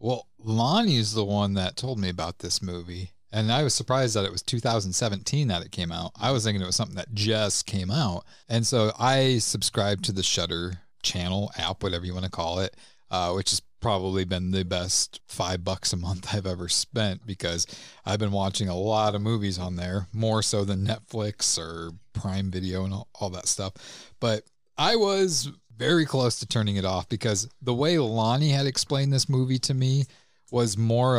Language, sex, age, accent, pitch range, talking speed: English, male, 40-59, American, 95-115 Hz, 200 wpm